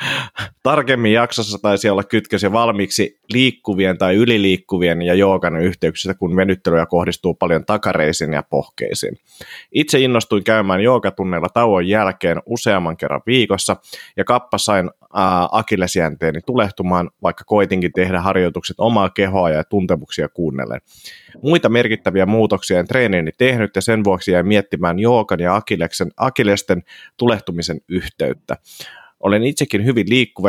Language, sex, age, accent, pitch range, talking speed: Finnish, male, 30-49, native, 90-110 Hz, 120 wpm